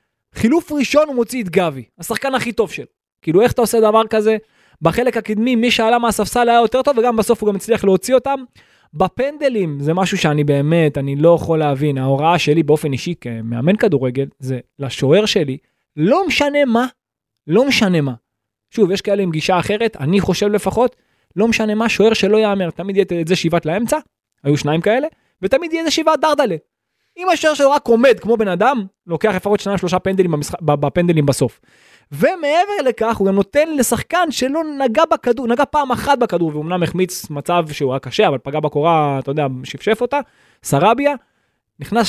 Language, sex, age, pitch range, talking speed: Hebrew, male, 20-39, 165-245 Hz, 180 wpm